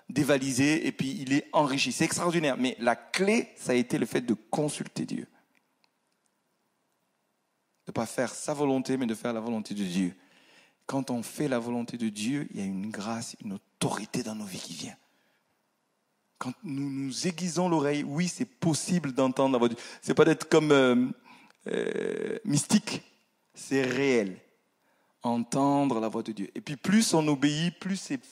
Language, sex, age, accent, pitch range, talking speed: French, male, 40-59, French, 125-170 Hz, 180 wpm